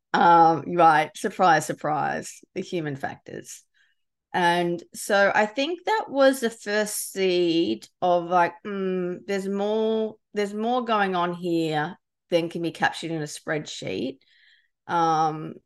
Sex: female